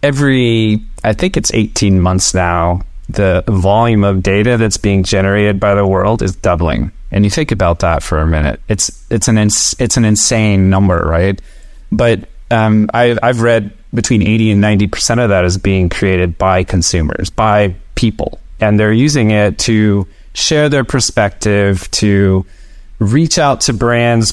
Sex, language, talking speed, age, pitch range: male, English, 165 wpm, 30-49, 95-115 Hz